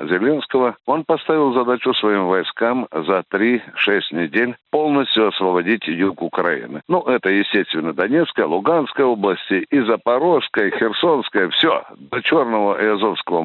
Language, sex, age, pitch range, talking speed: Russian, male, 60-79, 110-165 Hz, 125 wpm